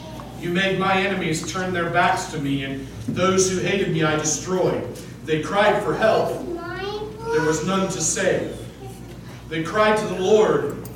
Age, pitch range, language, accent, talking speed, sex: 50-69, 165-220 Hz, English, American, 165 wpm, male